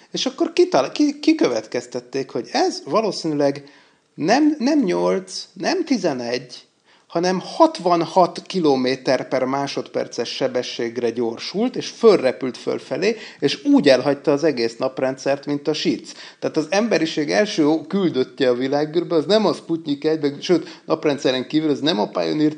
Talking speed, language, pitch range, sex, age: 140 wpm, Hungarian, 130-160 Hz, male, 30-49